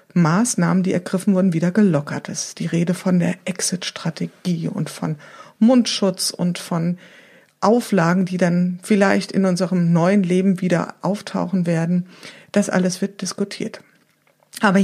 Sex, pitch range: female, 170-205 Hz